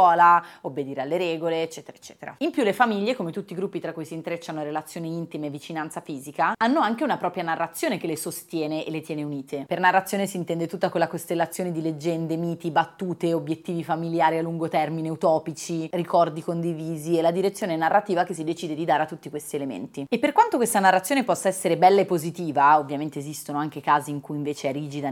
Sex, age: female, 30-49